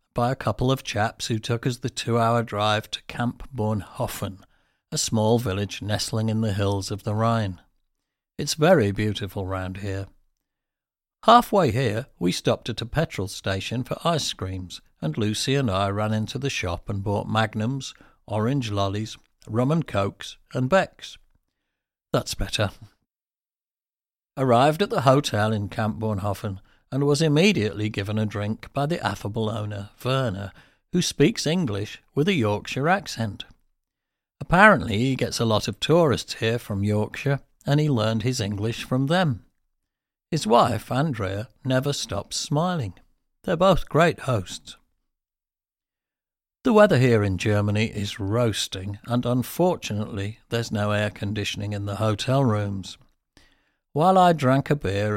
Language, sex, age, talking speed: English, male, 60-79, 145 wpm